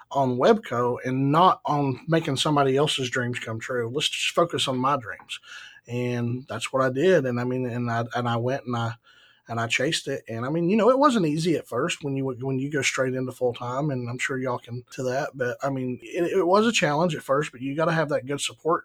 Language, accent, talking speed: English, American, 255 wpm